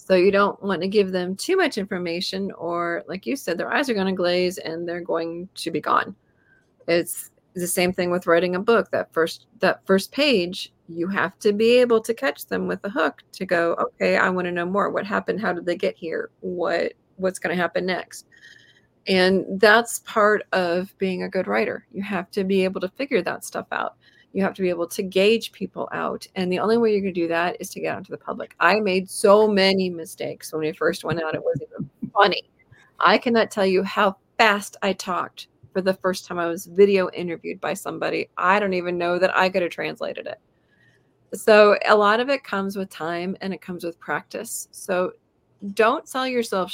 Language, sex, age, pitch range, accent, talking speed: English, female, 30-49, 180-210 Hz, American, 225 wpm